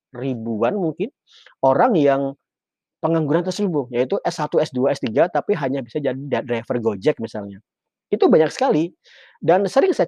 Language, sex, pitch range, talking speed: Indonesian, male, 135-180 Hz, 135 wpm